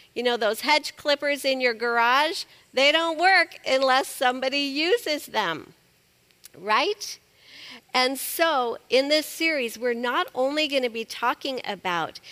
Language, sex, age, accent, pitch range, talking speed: English, female, 50-69, American, 200-275 Hz, 140 wpm